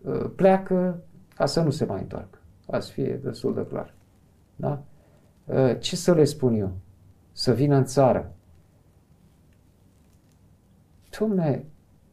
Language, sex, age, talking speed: Romanian, male, 50-69, 115 wpm